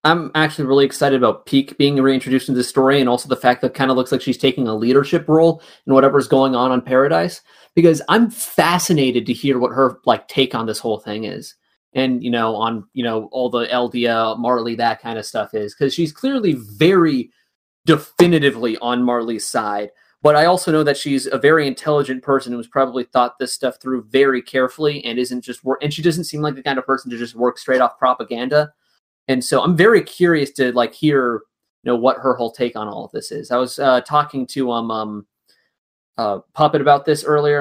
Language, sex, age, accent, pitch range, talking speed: English, male, 20-39, American, 125-150 Hz, 215 wpm